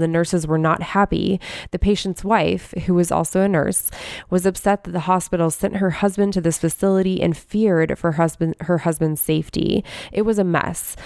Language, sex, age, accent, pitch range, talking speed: English, female, 20-39, American, 165-195 Hz, 190 wpm